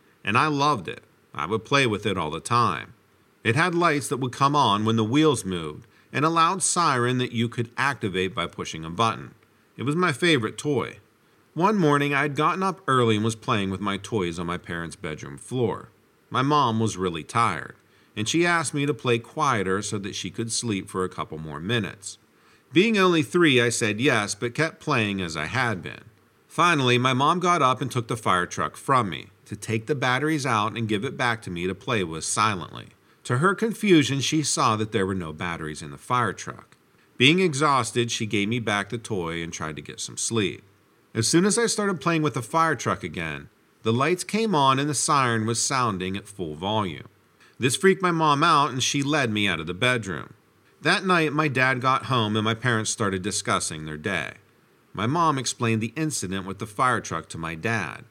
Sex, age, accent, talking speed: male, 50-69, American, 215 wpm